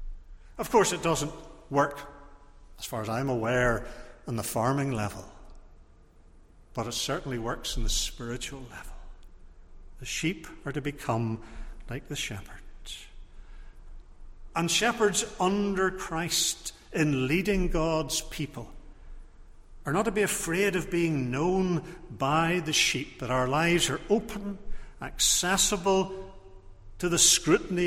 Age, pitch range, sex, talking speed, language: 60-79, 100-170 Hz, male, 125 wpm, English